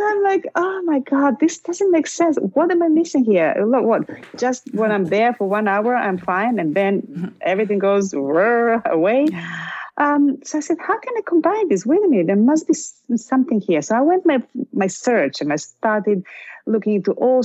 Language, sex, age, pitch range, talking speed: English, female, 30-49, 180-275 Hz, 205 wpm